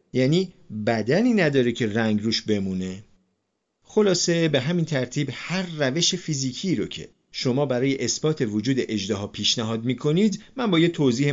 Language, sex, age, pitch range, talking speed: Persian, male, 40-59, 105-160 Hz, 145 wpm